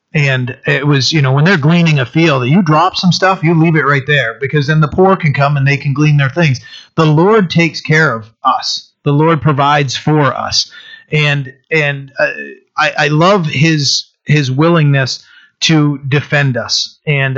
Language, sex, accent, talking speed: English, male, American, 190 wpm